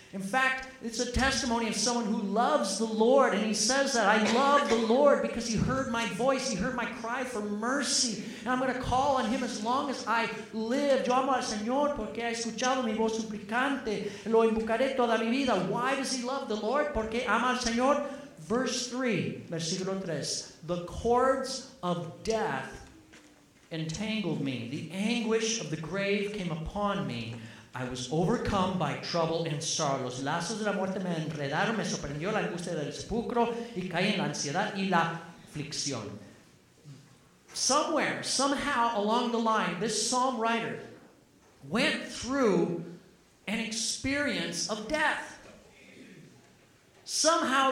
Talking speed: 115 wpm